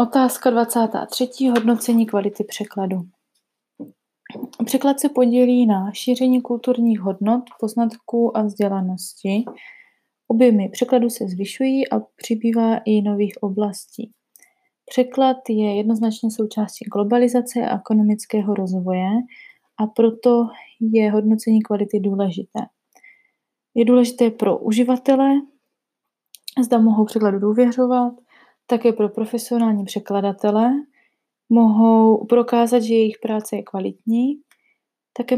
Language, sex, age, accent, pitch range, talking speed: English, female, 20-39, Czech, 215-245 Hz, 100 wpm